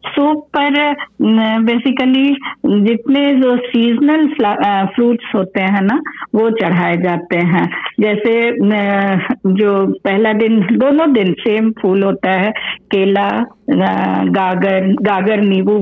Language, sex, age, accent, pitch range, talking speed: English, female, 50-69, Indian, 190-235 Hz, 115 wpm